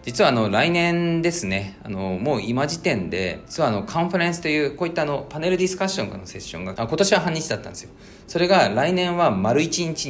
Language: Japanese